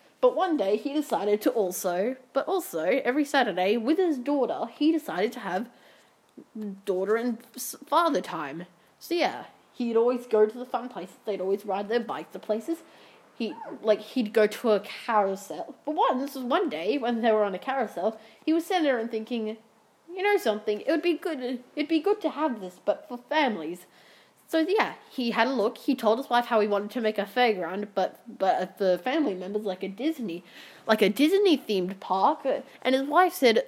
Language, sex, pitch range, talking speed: English, female, 205-290 Hz, 195 wpm